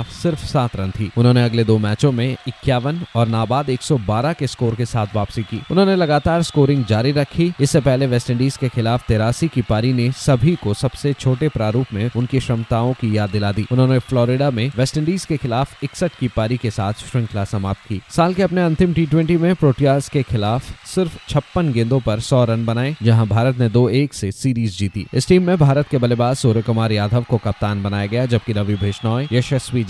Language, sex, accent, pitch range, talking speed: Hindi, male, native, 115-145 Hz, 205 wpm